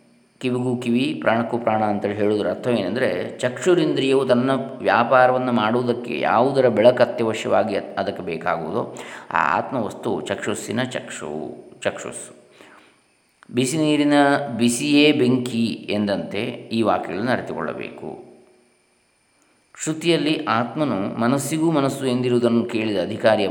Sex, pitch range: male, 105-125 Hz